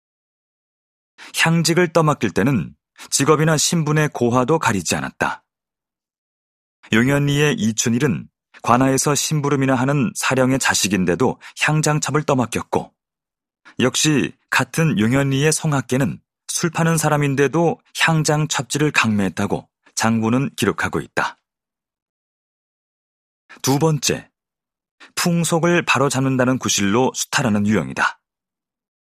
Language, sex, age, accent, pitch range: Korean, male, 30-49, native, 115-150 Hz